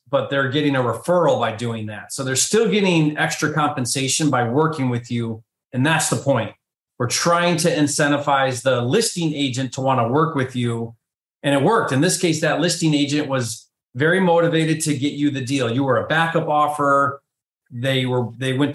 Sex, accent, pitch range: male, American, 125-155 Hz